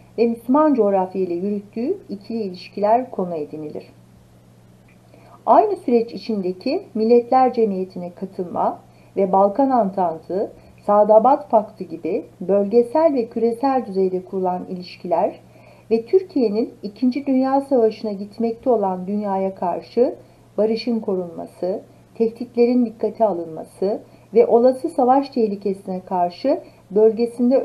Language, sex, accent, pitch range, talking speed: Turkish, female, native, 185-250 Hz, 100 wpm